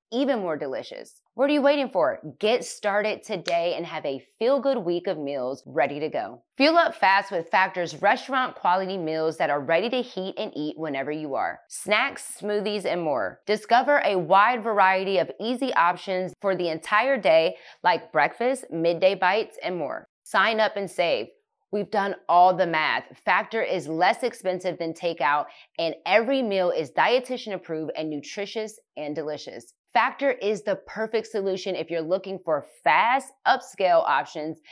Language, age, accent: English, 20-39, American